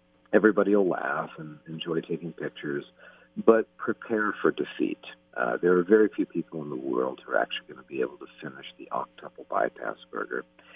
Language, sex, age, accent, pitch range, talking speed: English, male, 50-69, American, 65-110 Hz, 185 wpm